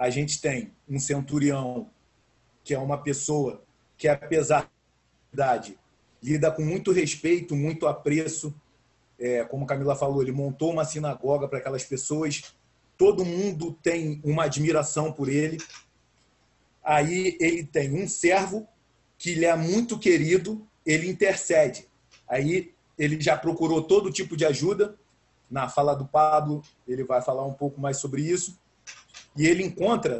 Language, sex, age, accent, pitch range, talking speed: Portuguese, male, 40-59, Brazilian, 145-185 Hz, 145 wpm